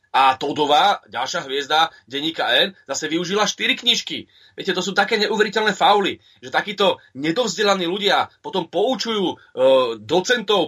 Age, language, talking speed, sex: 30-49, Slovak, 135 wpm, male